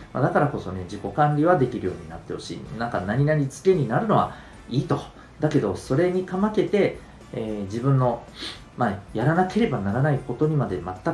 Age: 40-59